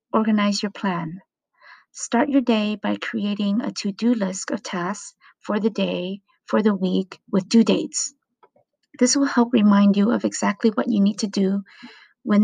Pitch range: 190-240 Hz